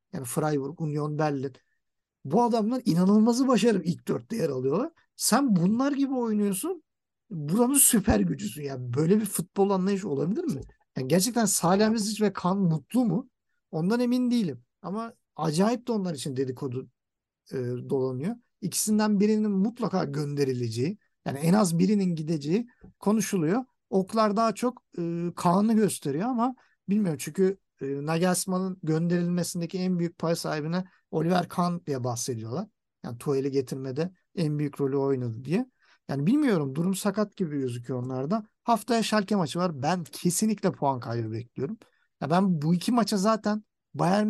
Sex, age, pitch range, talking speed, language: male, 50-69, 150-215 Hz, 140 wpm, Turkish